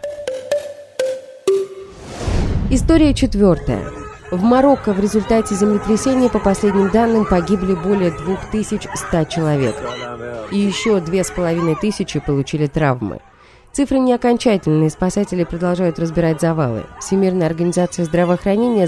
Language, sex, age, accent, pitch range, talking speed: Russian, female, 20-39, native, 165-225 Hz, 90 wpm